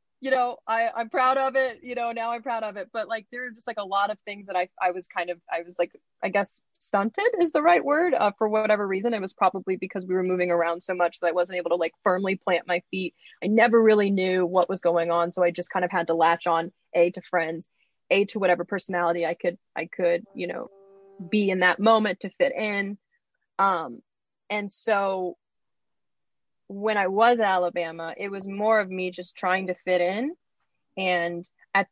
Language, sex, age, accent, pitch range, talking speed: English, female, 20-39, American, 180-215 Hz, 225 wpm